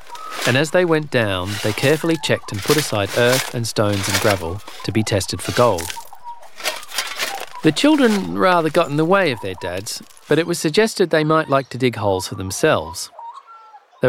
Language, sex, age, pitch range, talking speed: English, male, 40-59, 105-160 Hz, 190 wpm